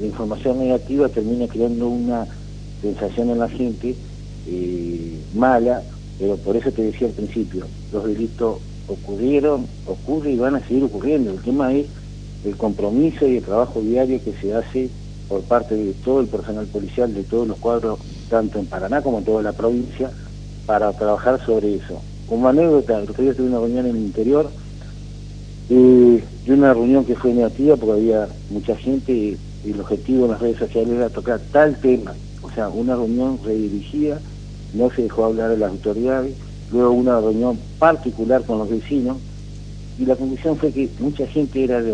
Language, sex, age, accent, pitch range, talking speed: Spanish, male, 50-69, Argentinian, 110-135 Hz, 175 wpm